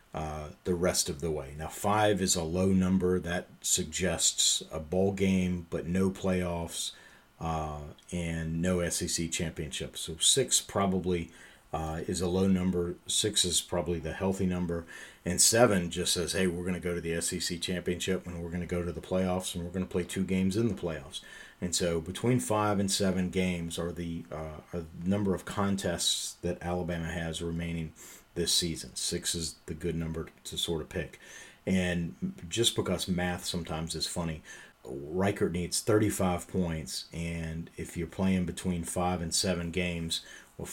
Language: English